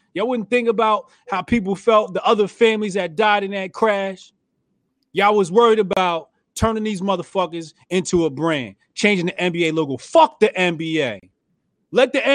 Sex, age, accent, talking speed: male, 30-49, American, 165 wpm